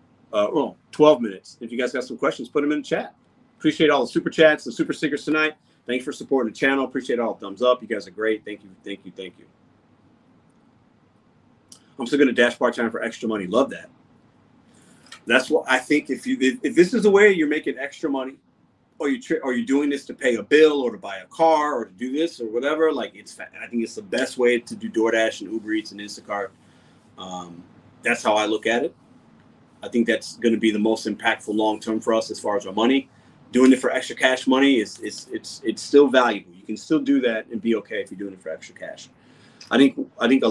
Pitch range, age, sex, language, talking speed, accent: 110-145 Hz, 30-49, male, English, 245 wpm, American